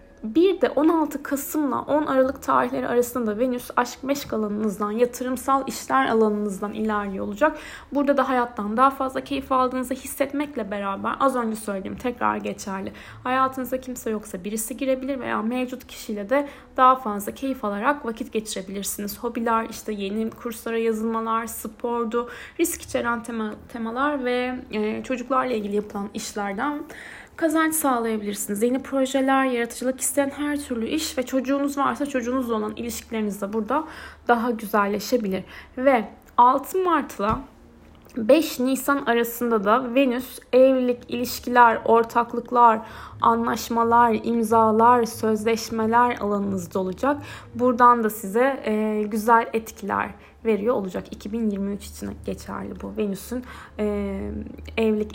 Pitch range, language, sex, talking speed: 215-265 Hz, Turkish, female, 120 wpm